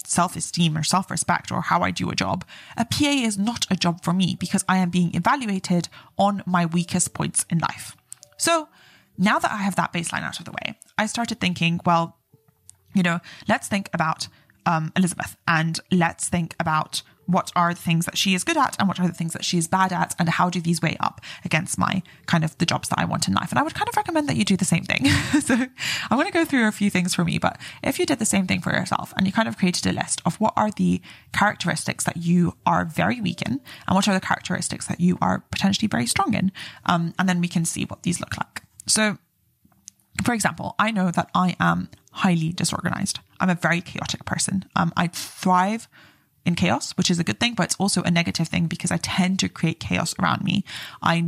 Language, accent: English, British